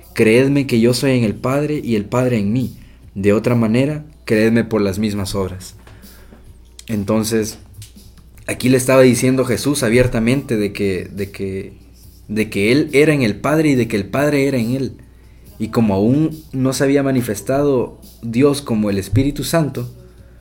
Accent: Mexican